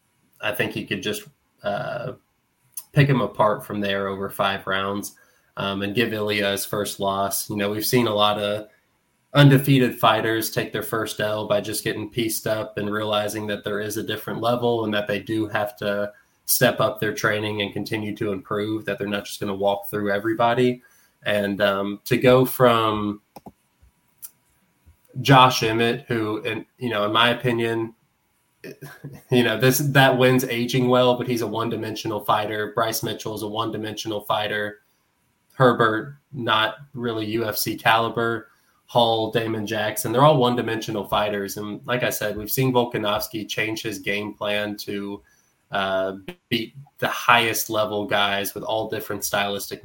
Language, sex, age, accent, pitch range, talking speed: English, male, 20-39, American, 105-120 Hz, 165 wpm